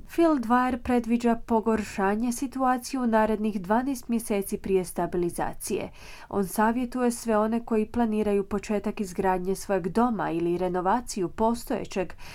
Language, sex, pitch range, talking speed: Croatian, female, 185-235 Hz, 115 wpm